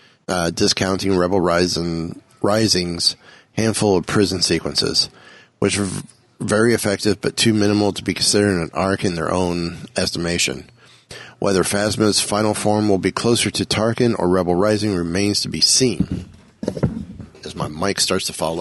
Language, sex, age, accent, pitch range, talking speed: English, male, 30-49, American, 95-120 Hz, 155 wpm